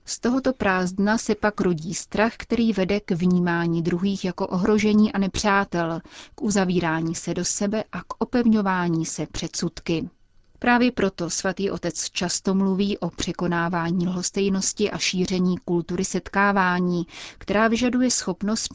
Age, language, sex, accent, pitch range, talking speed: 30-49, Czech, female, native, 175-200 Hz, 135 wpm